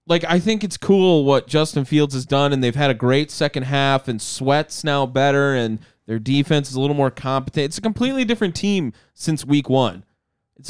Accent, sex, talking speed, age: American, male, 215 wpm, 20-39